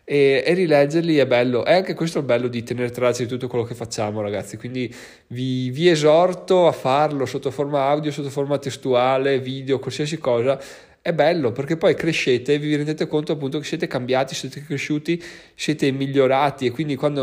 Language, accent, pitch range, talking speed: Italian, native, 120-150 Hz, 190 wpm